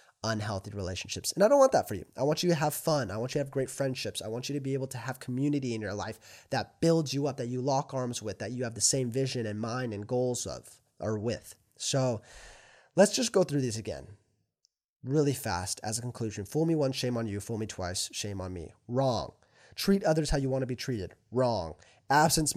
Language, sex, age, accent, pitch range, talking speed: English, male, 20-39, American, 110-160 Hz, 240 wpm